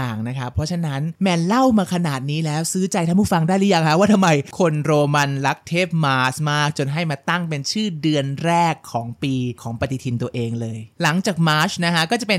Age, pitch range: 20-39, 145-200 Hz